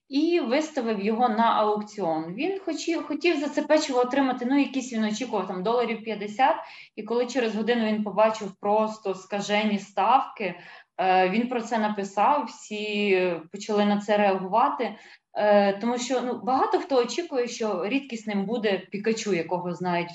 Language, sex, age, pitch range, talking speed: Ukrainian, female, 20-39, 195-250 Hz, 140 wpm